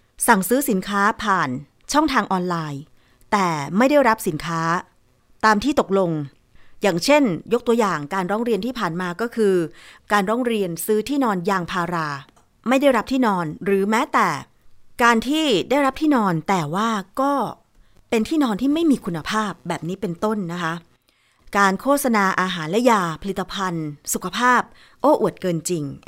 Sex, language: female, Thai